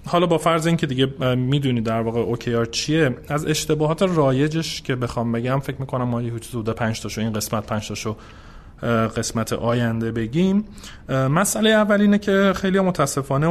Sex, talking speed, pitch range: male, 155 wpm, 105-135 Hz